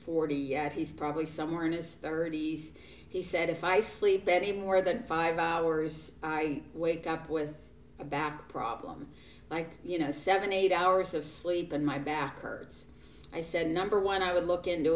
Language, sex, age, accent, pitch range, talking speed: English, female, 50-69, American, 160-190 Hz, 180 wpm